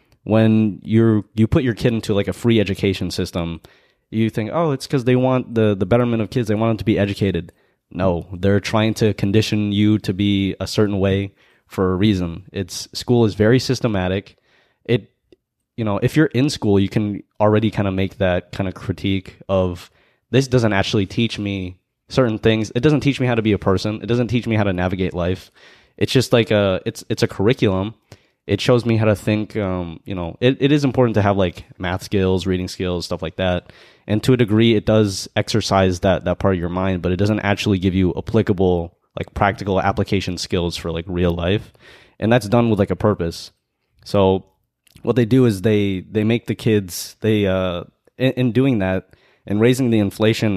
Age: 20-39